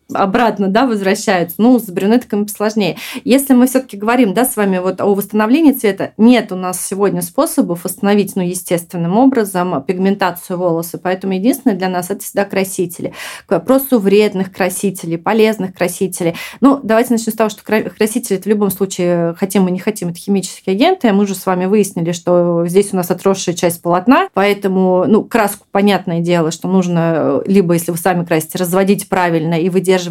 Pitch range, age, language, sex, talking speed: 185-220 Hz, 30-49, Russian, female, 175 wpm